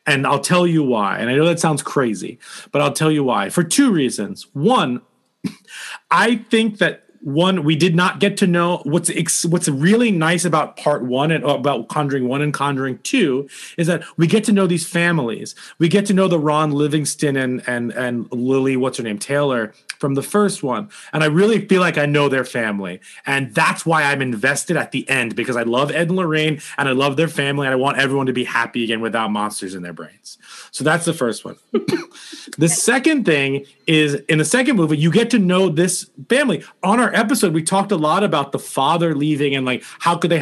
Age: 30-49